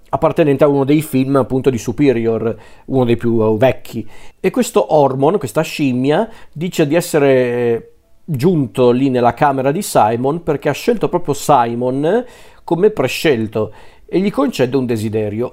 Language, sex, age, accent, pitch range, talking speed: Italian, male, 40-59, native, 120-150 Hz, 145 wpm